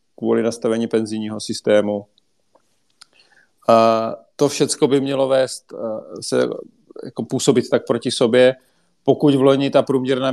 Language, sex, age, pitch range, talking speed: Czech, male, 40-59, 110-125 Hz, 115 wpm